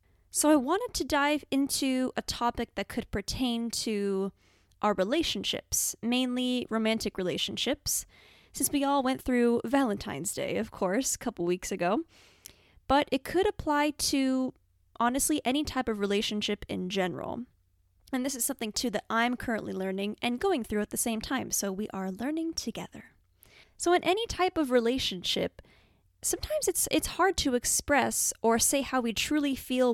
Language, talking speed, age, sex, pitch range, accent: English, 160 wpm, 10-29, female, 200-275 Hz, American